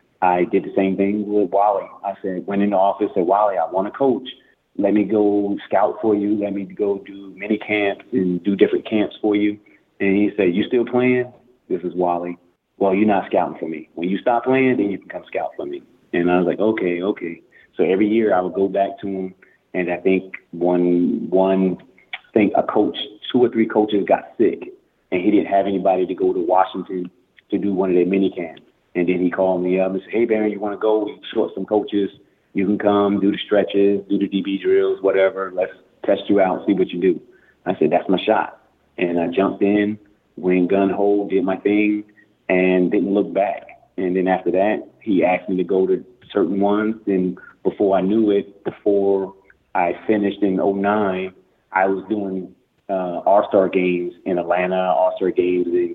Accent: American